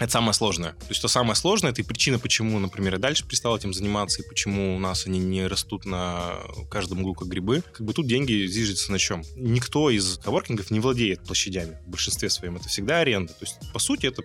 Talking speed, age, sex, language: 230 wpm, 20-39, male, Russian